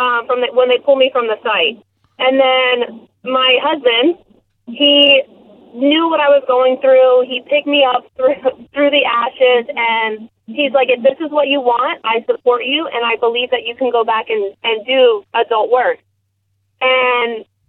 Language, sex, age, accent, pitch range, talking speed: English, female, 30-49, American, 235-280 Hz, 185 wpm